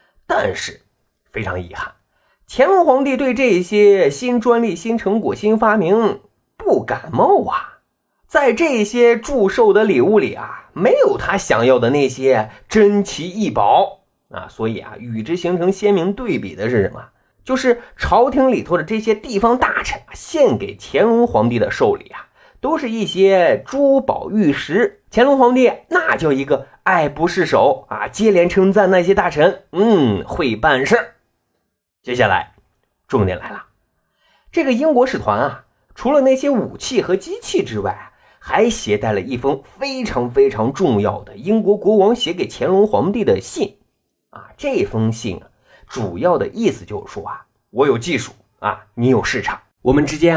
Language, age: Chinese, 30-49